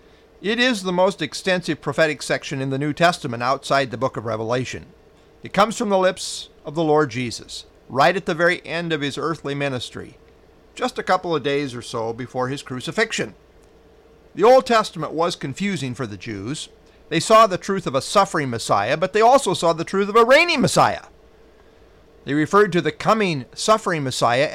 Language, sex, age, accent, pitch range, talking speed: English, male, 50-69, American, 135-190 Hz, 190 wpm